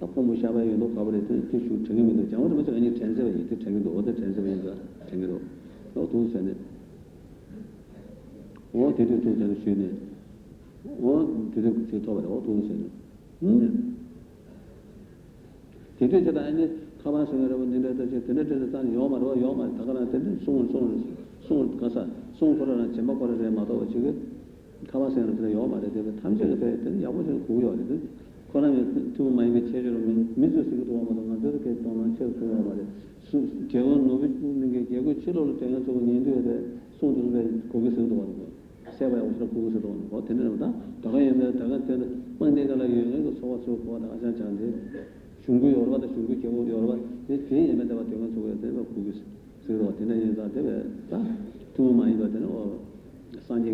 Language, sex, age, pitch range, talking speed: Italian, male, 60-79, 110-130 Hz, 75 wpm